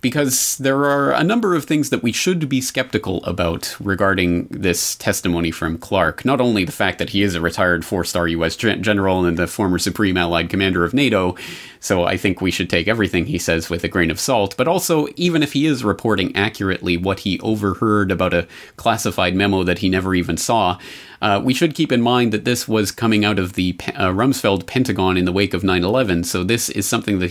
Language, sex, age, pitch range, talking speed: English, male, 30-49, 90-115 Hz, 215 wpm